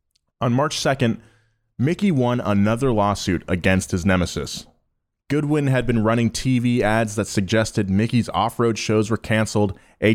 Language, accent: English, American